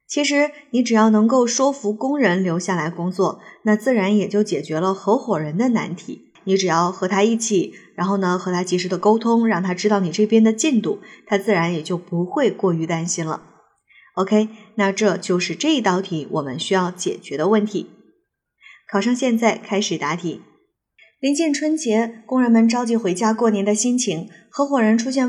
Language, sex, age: Chinese, female, 20-39